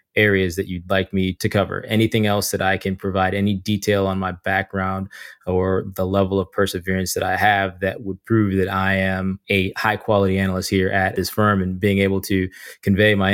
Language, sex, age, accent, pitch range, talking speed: English, male, 20-39, American, 95-105 Hz, 205 wpm